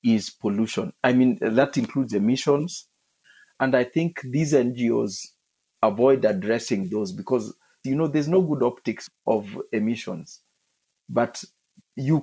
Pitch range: 105-140 Hz